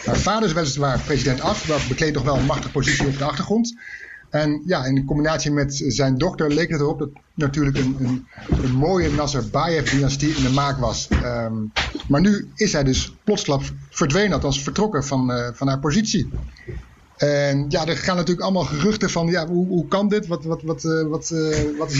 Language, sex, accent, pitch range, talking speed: Dutch, male, Dutch, 135-175 Hz, 190 wpm